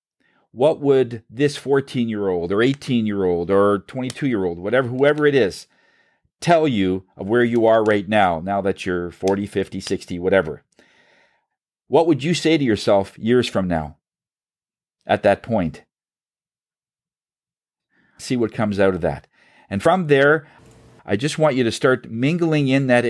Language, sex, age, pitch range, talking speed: English, male, 40-59, 110-155 Hz, 150 wpm